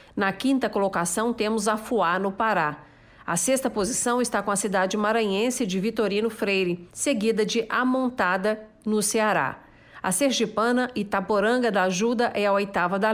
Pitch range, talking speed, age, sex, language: 195-230 Hz, 155 wpm, 50-69, female, Portuguese